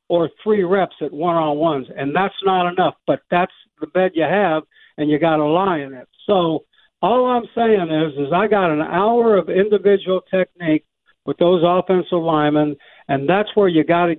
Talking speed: 200 wpm